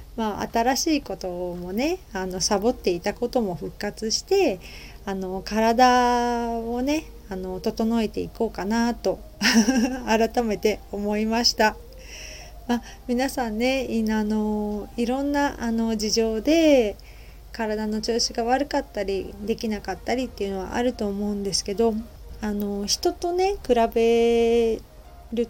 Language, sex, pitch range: Japanese, female, 210-250 Hz